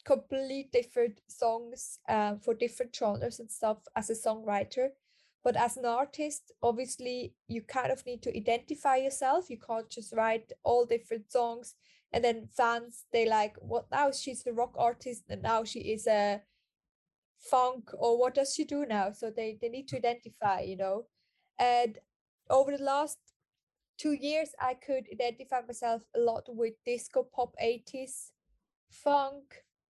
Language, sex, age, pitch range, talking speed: English, female, 10-29, 220-260 Hz, 160 wpm